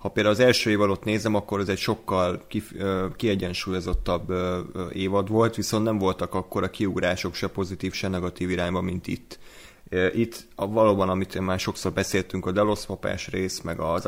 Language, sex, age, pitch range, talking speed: Hungarian, male, 30-49, 95-100 Hz, 170 wpm